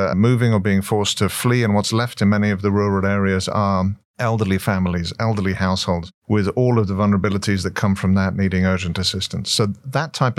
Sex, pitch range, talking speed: male, 95-115 Hz, 200 wpm